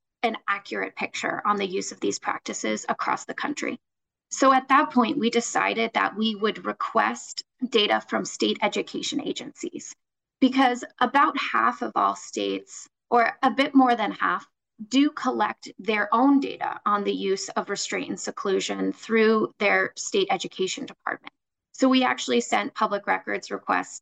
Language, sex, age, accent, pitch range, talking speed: English, female, 20-39, American, 200-265 Hz, 155 wpm